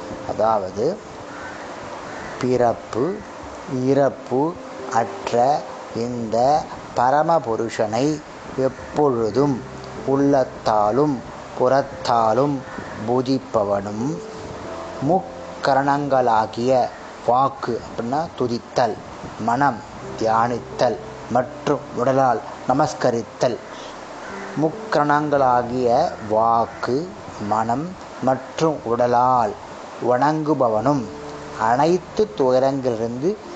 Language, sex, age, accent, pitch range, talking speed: Tamil, male, 30-49, native, 115-140 Hz, 45 wpm